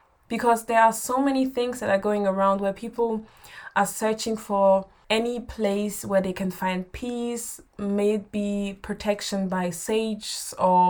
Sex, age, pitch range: female, 20-39, 190-220 Hz